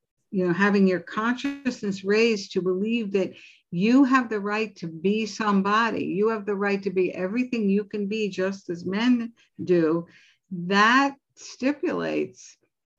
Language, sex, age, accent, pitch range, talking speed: English, female, 60-79, American, 180-215 Hz, 150 wpm